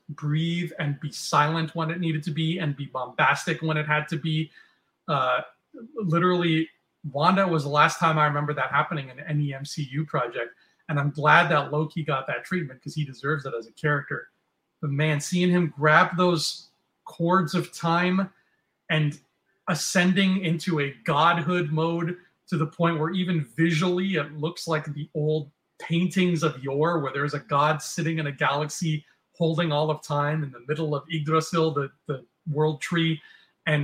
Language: English